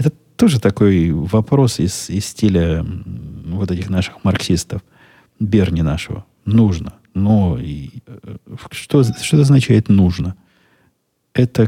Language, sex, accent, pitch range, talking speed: Russian, male, native, 90-110 Hz, 100 wpm